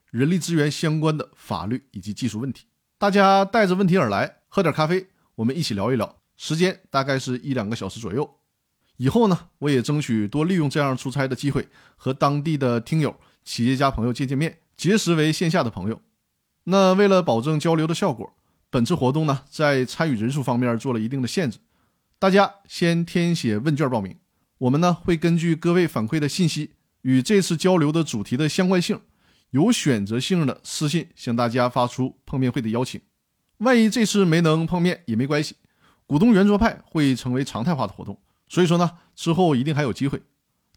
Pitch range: 125-180 Hz